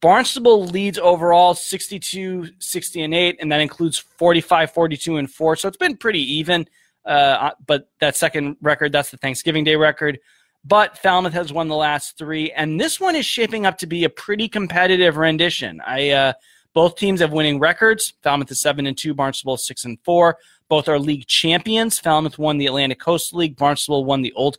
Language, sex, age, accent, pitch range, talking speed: English, male, 20-39, American, 145-180 Hz, 175 wpm